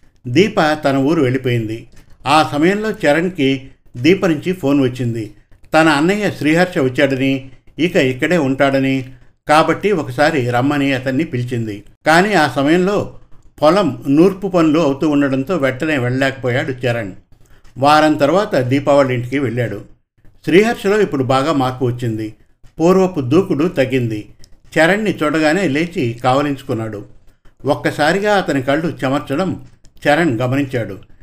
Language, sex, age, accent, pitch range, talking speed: Telugu, male, 60-79, native, 125-155 Hz, 110 wpm